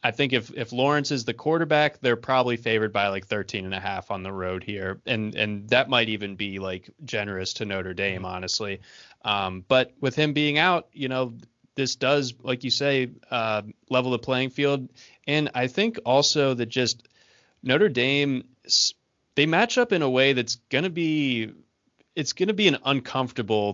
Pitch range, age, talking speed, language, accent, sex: 105-130 Hz, 20-39, 190 wpm, English, American, male